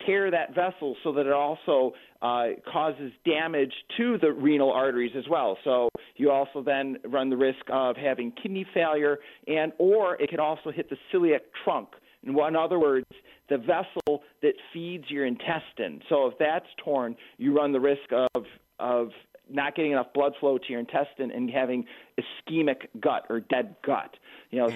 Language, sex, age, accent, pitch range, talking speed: English, male, 40-59, American, 125-160 Hz, 175 wpm